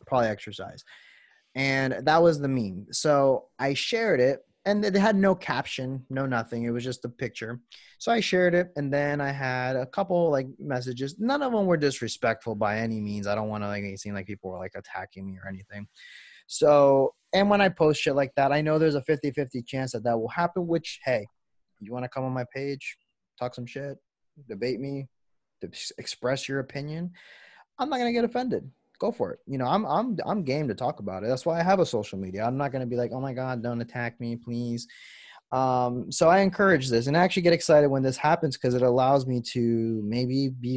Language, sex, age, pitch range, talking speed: English, male, 20-39, 120-150 Hz, 225 wpm